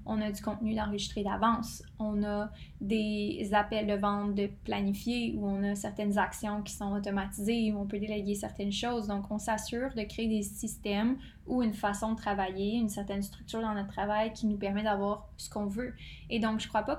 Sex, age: female, 10-29